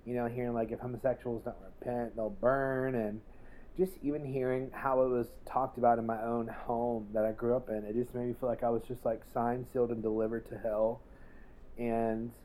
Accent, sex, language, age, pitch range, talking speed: American, male, English, 30-49, 110-125 Hz, 215 wpm